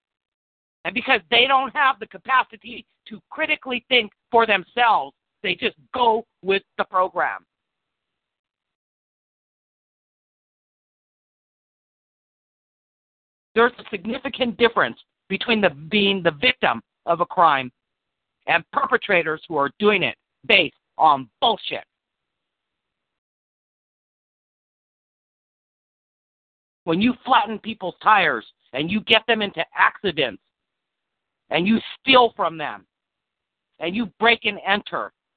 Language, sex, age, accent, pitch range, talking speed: English, male, 50-69, American, 185-245 Hz, 100 wpm